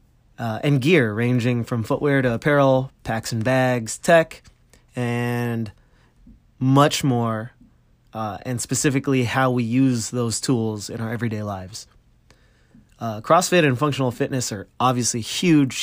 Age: 20-39